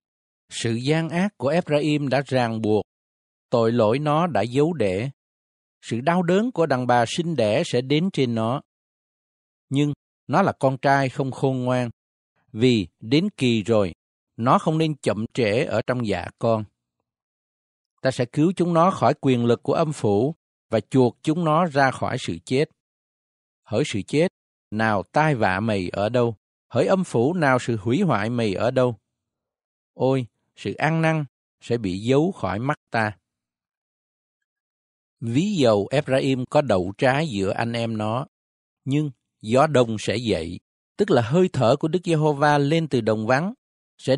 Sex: male